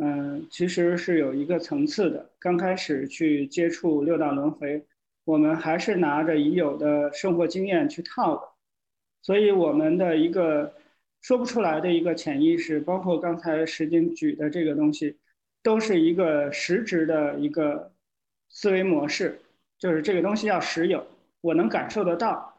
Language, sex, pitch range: Chinese, male, 155-210 Hz